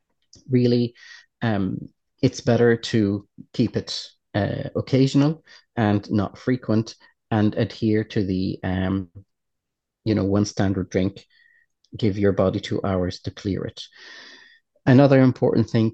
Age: 30-49